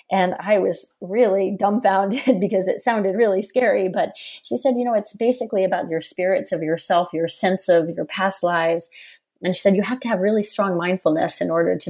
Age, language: 30-49, English